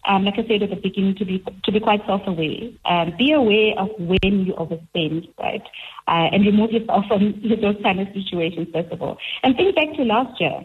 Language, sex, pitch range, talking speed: English, female, 165-215 Hz, 220 wpm